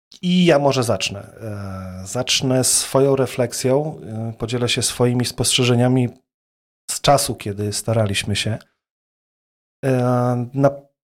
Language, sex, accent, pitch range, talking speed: Polish, male, native, 110-130 Hz, 90 wpm